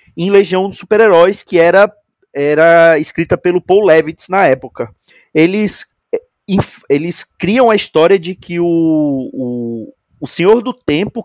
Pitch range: 155-205 Hz